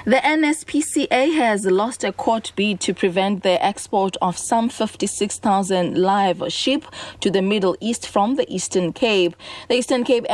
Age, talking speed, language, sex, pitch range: 20-39, 155 wpm, English, female, 180-235 Hz